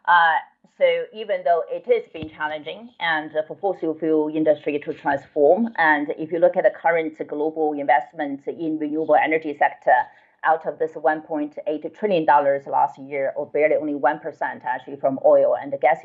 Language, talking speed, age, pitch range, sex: English, 170 wpm, 30-49, 150-235 Hz, female